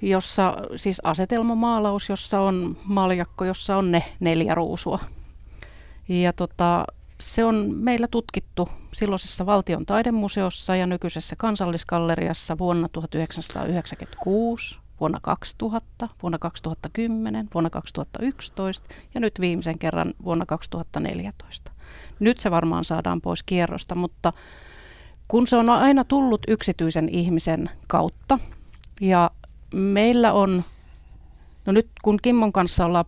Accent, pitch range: native, 170-210 Hz